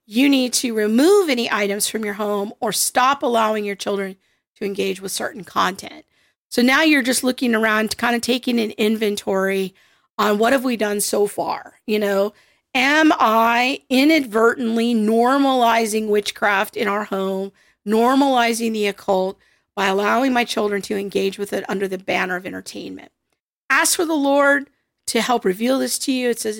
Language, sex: English, female